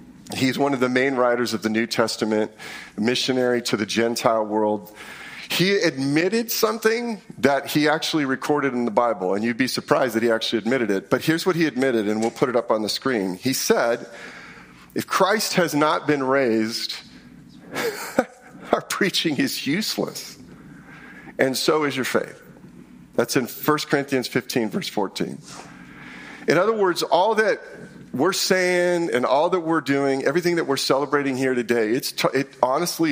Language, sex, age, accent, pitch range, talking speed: English, male, 40-59, American, 120-160 Hz, 165 wpm